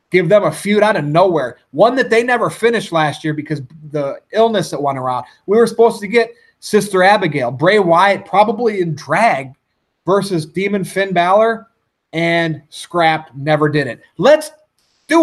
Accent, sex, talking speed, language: American, male, 170 wpm, English